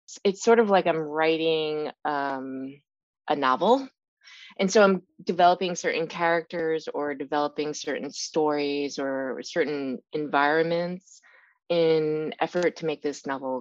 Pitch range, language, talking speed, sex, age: 150-190 Hz, English, 125 wpm, female, 20-39